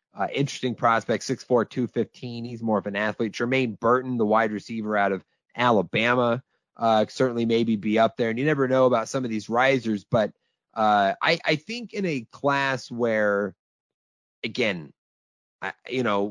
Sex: male